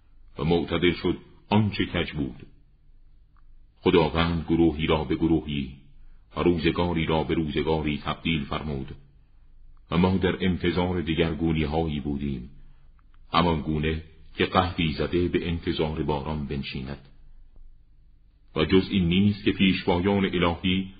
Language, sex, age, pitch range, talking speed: Persian, male, 40-59, 75-90 Hz, 115 wpm